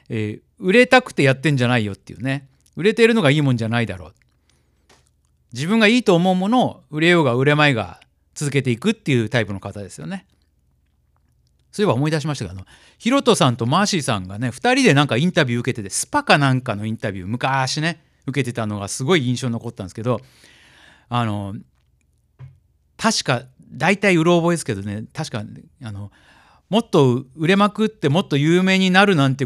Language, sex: Japanese, male